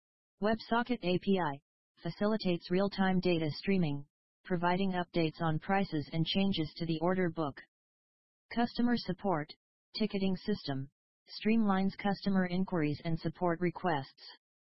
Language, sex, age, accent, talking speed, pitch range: English, female, 40-59, American, 105 wpm, 165-195 Hz